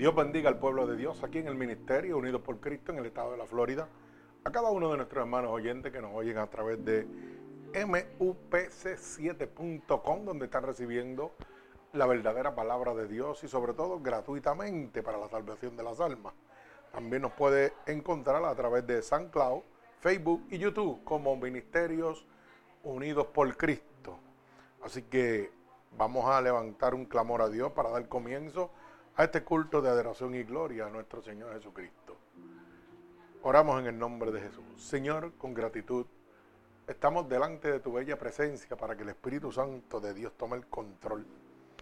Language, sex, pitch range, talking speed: Spanish, male, 115-145 Hz, 165 wpm